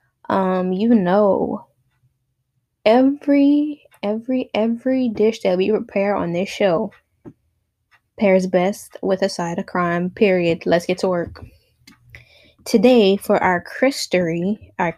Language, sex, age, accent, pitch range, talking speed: English, female, 10-29, American, 180-230 Hz, 115 wpm